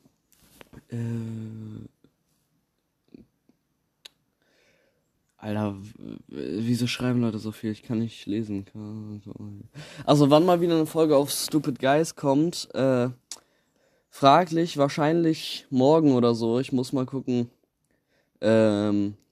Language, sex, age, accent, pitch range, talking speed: German, male, 20-39, German, 110-140 Hz, 105 wpm